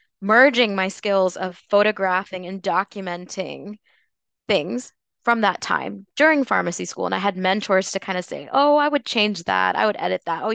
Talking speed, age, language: 180 wpm, 20-39, English